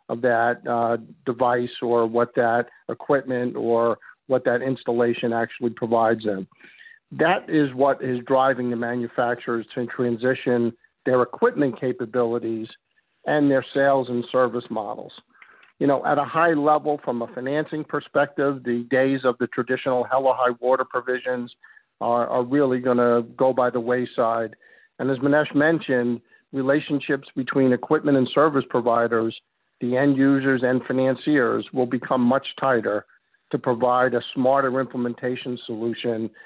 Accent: American